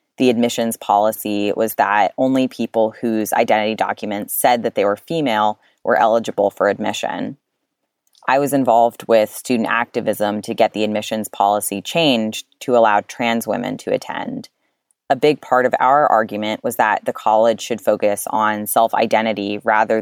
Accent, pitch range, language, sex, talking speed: American, 105-125 Hz, English, female, 155 wpm